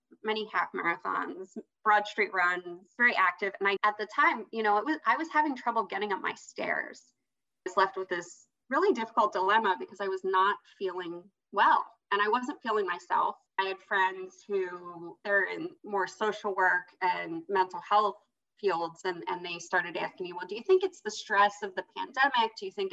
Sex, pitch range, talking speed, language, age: female, 195-280 Hz, 200 wpm, English, 20-39